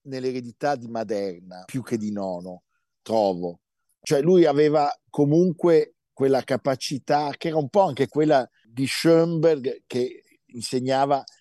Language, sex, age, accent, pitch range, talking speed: Italian, male, 50-69, native, 115-150 Hz, 125 wpm